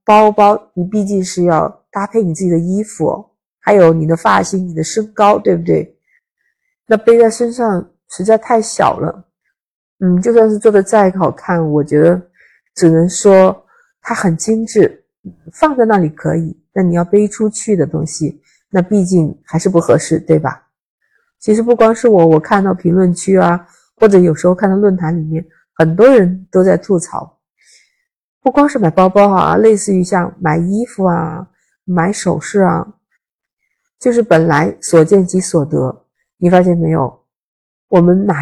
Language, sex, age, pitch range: Chinese, female, 50-69, 175-220 Hz